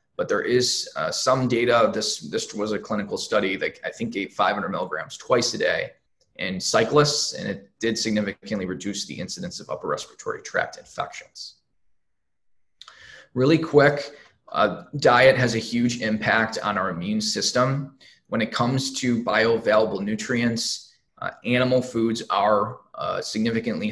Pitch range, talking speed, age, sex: 110-140 Hz, 150 wpm, 20-39, male